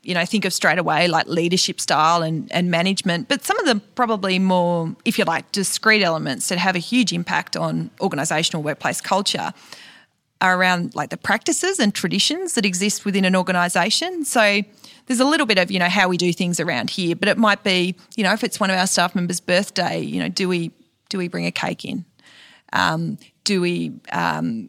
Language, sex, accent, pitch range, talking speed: English, female, Australian, 175-225 Hz, 210 wpm